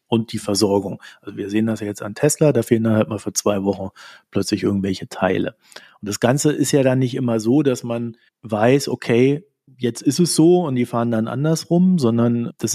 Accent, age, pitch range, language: German, 40-59, 110-135 Hz, German